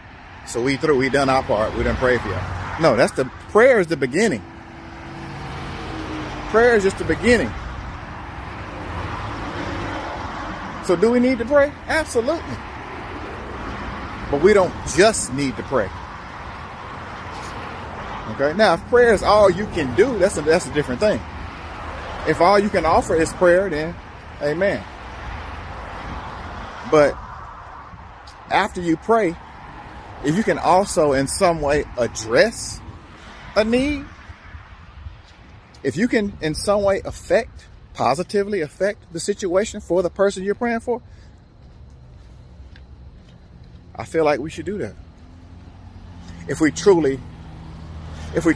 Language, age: English, 40-59